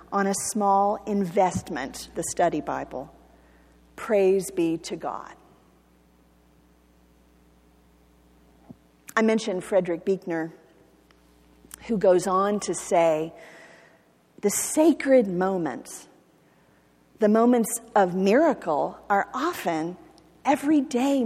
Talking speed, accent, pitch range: 85 wpm, American, 140-225 Hz